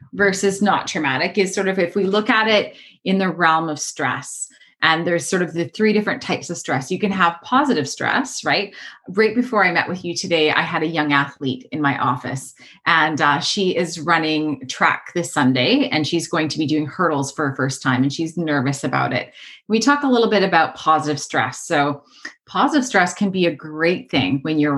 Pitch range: 140-190 Hz